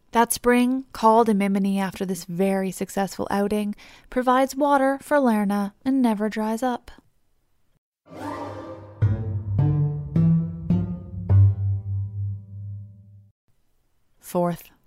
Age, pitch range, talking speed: 20-39, 180-245 Hz, 75 wpm